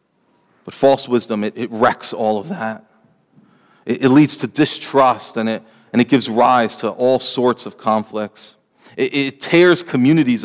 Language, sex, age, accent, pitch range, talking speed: English, male, 40-59, American, 120-150 Hz, 160 wpm